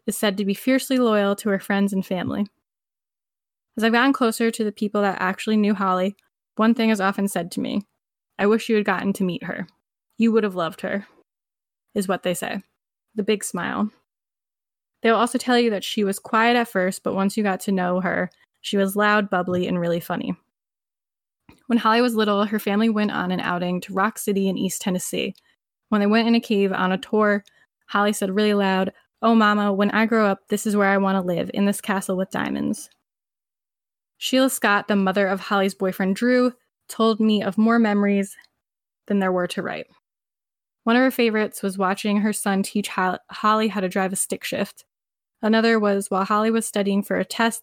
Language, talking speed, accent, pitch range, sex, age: English, 205 wpm, American, 195-220 Hz, female, 10-29